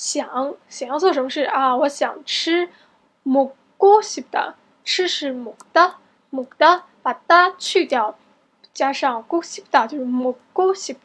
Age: 10-29